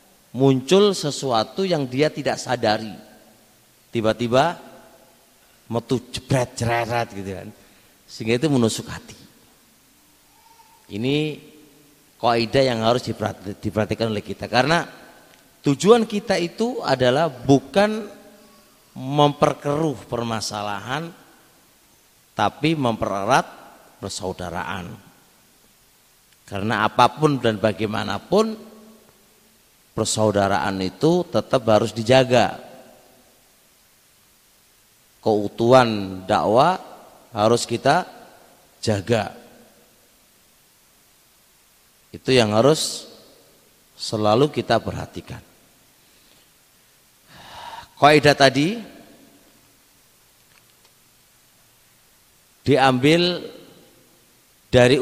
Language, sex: Indonesian, male